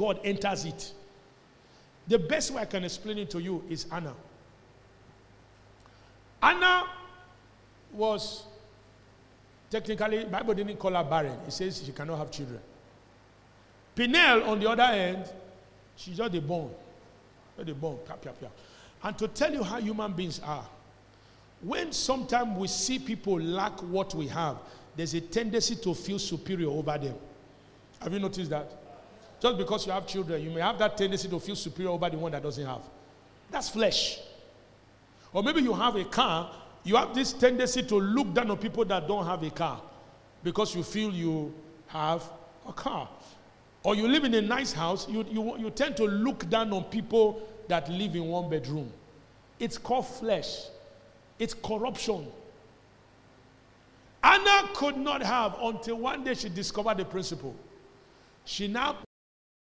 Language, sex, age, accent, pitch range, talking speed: English, male, 50-69, Nigerian, 150-220 Hz, 155 wpm